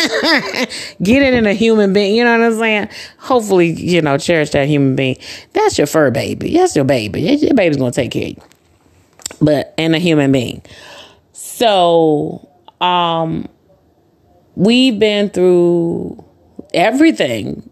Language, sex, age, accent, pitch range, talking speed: English, female, 30-49, American, 130-170 Hz, 145 wpm